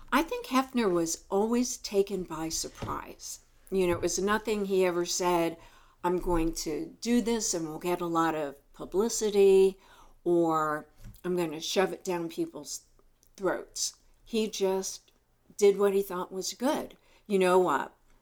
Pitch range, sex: 165-195 Hz, female